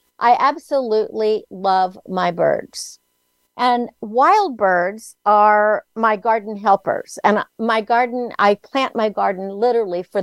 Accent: American